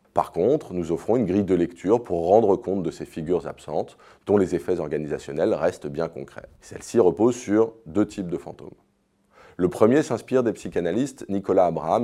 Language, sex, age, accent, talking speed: French, male, 30-49, French, 180 wpm